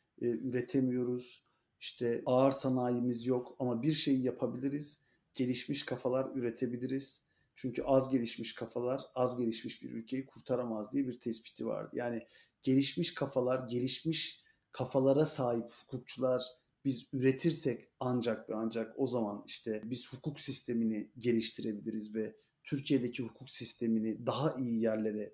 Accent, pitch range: native, 120-140 Hz